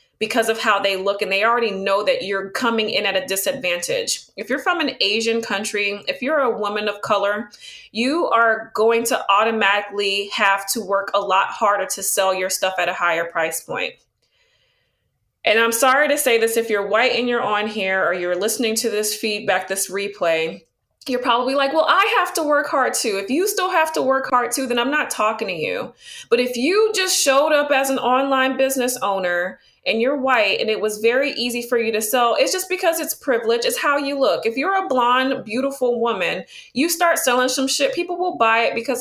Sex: female